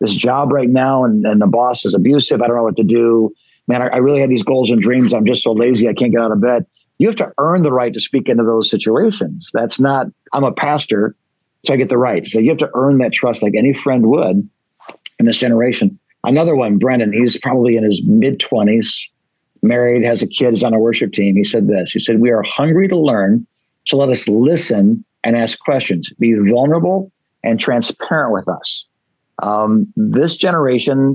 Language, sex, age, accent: English, male, 50-69, American